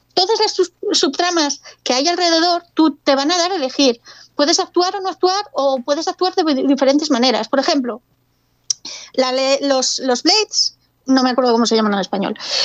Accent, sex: Spanish, female